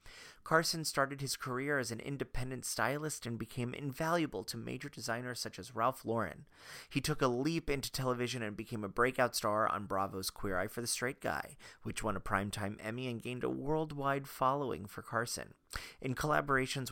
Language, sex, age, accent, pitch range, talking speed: English, male, 30-49, American, 95-130 Hz, 180 wpm